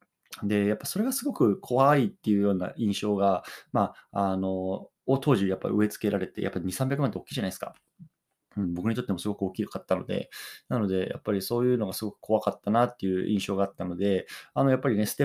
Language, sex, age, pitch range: Japanese, male, 20-39, 95-120 Hz